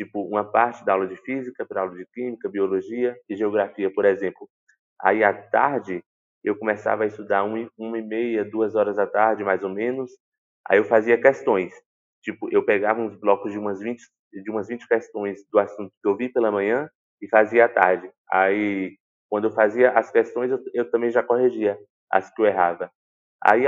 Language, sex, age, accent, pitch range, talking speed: Portuguese, male, 20-39, Brazilian, 105-125 Hz, 195 wpm